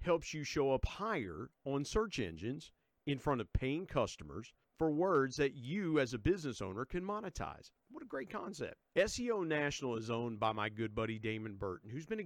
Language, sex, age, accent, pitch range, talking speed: English, male, 50-69, American, 105-145 Hz, 195 wpm